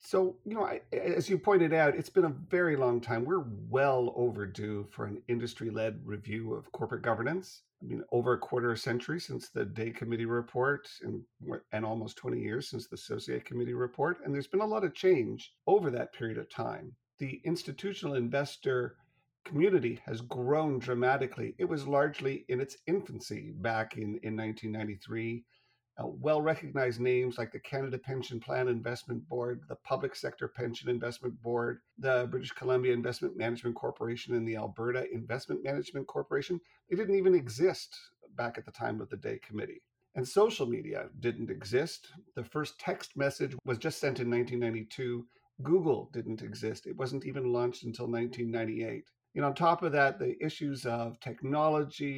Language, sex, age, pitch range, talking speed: English, male, 50-69, 120-145 Hz, 170 wpm